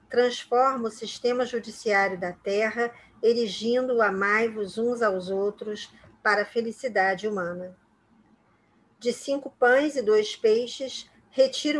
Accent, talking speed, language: Brazilian, 115 wpm, Portuguese